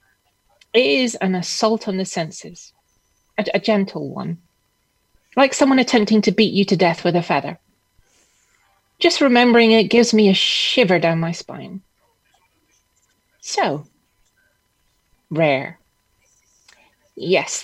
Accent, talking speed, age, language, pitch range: British, 120 wpm, 30-49, English, 160-220 Hz